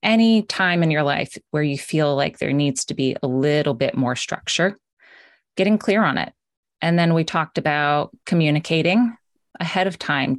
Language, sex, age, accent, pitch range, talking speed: English, female, 20-39, American, 140-170 Hz, 180 wpm